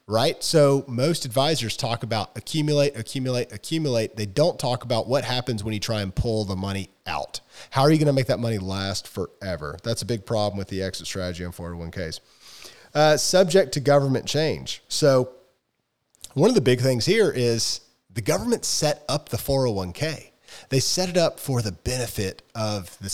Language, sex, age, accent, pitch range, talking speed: English, male, 30-49, American, 105-140 Hz, 185 wpm